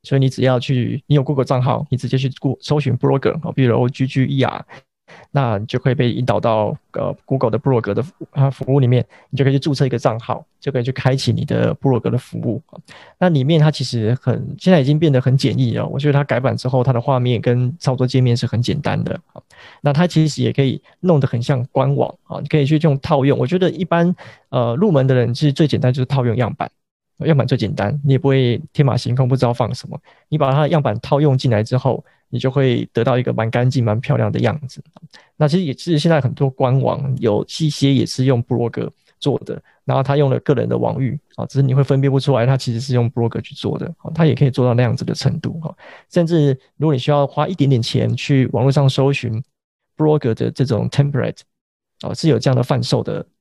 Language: Chinese